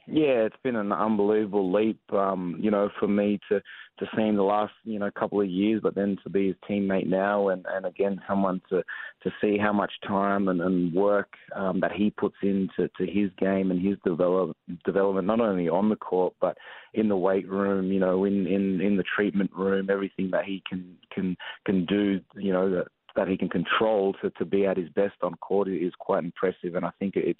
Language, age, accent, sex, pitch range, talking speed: English, 20-39, Australian, male, 90-100 Hz, 220 wpm